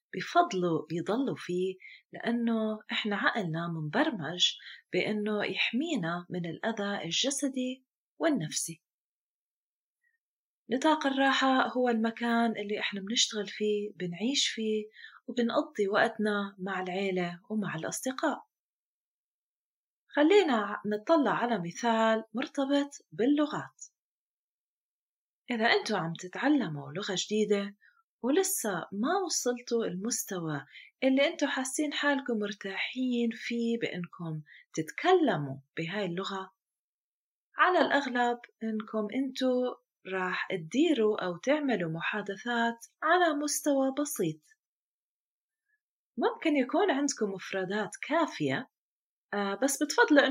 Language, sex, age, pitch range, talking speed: Arabic, female, 30-49, 195-280 Hz, 90 wpm